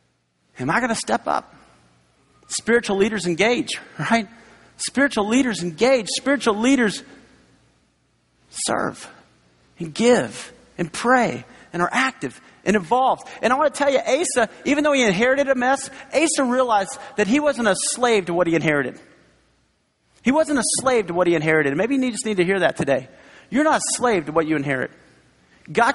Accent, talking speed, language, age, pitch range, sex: American, 170 wpm, English, 40-59, 170-240 Hz, male